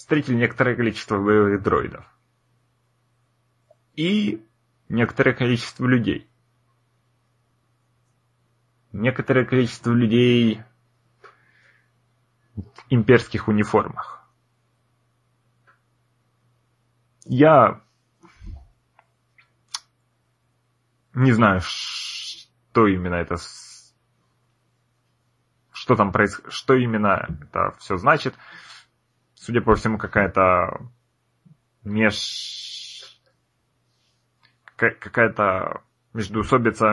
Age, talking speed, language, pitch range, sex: 30-49, 60 wpm, Russian, 110-125 Hz, male